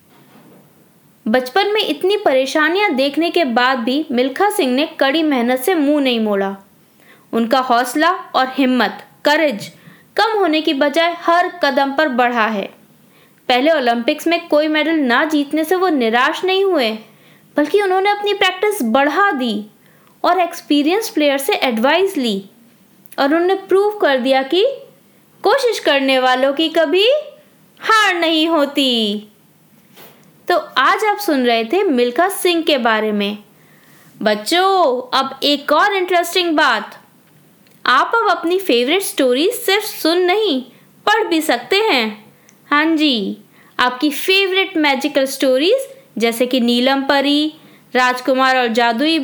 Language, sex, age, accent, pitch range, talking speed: Hindi, female, 20-39, native, 255-360 Hz, 135 wpm